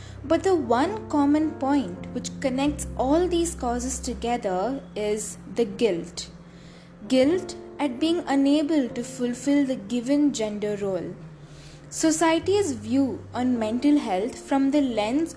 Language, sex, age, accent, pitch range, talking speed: English, female, 20-39, Indian, 215-295 Hz, 125 wpm